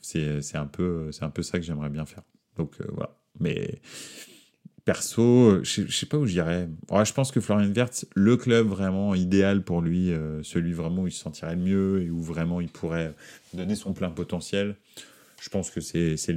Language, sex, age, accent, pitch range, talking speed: French, male, 30-49, French, 85-115 Hz, 205 wpm